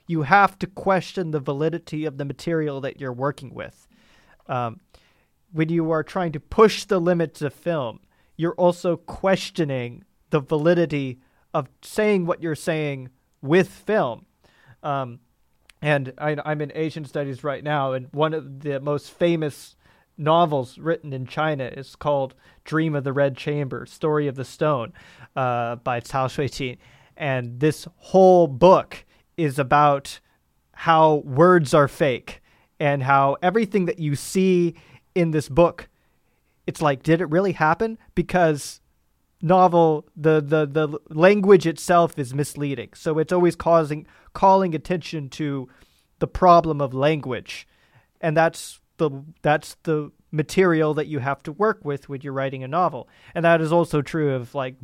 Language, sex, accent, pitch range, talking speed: English, male, American, 140-170 Hz, 150 wpm